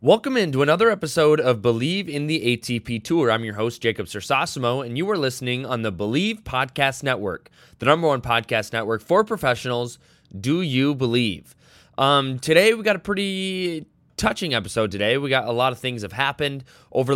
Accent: American